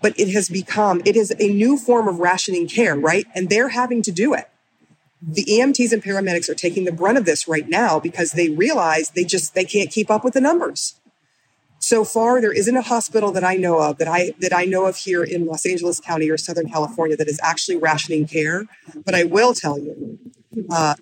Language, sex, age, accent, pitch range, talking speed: English, female, 30-49, American, 160-205 Hz, 225 wpm